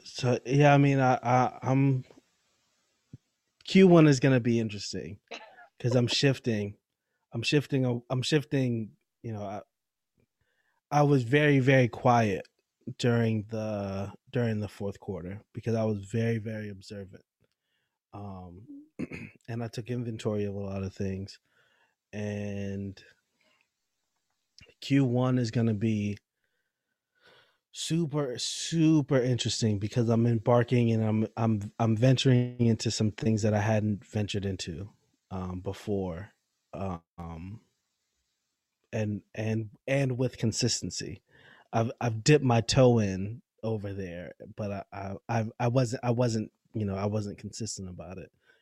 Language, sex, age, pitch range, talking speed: English, male, 20-39, 100-125 Hz, 130 wpm